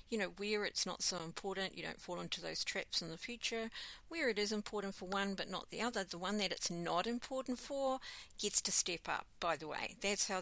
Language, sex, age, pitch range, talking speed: English, female, 50-69, 165-200 Hz, 240 wpm